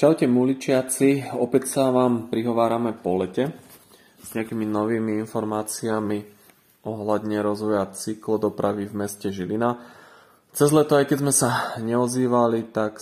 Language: Slovak